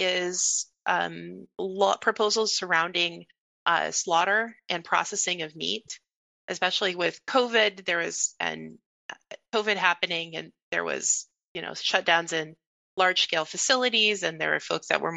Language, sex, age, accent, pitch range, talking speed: English, female, 30-49, American, 160-190 Hz, 140 wpm